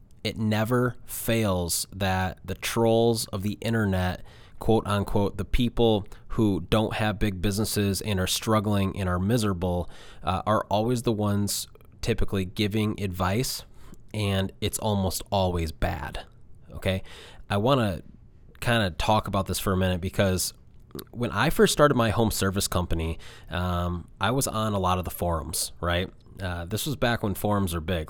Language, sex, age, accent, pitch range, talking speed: English, male, 20-39, American, 95-115 Hz, 160 wpm